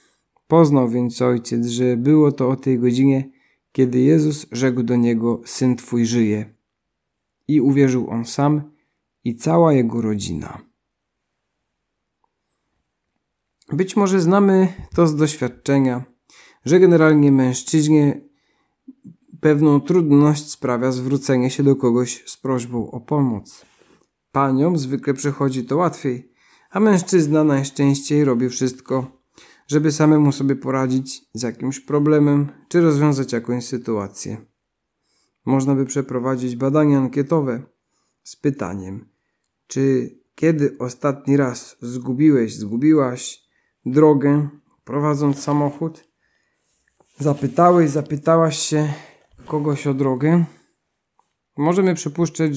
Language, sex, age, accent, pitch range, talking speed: Polish, male, 40-59, native, 125-150 Hz, 105 wpm